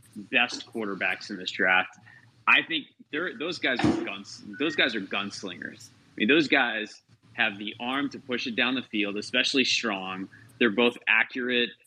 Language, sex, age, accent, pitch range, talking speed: English, male, 20-39, American, 105-125 Hz, 170 wpm